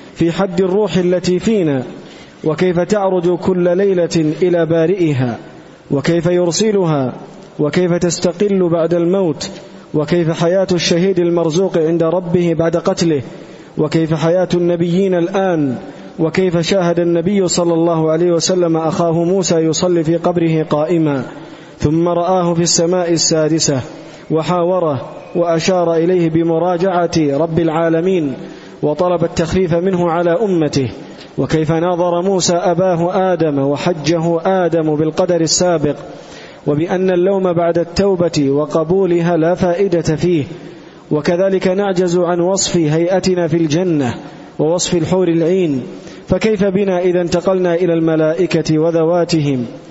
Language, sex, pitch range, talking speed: Arabic, male, 165-180 Hz, 110 wpm